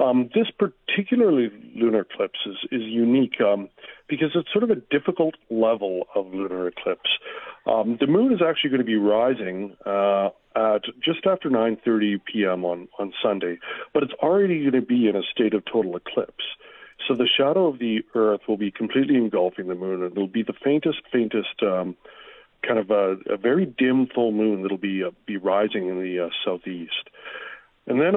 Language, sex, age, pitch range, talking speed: English, male, 50-69, 100-130 Hz, 185 wpm